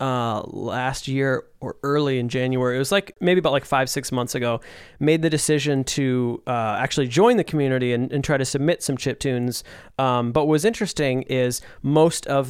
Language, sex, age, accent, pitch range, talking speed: English, male, 20-39, American, 125-150 Hz, 195 wpm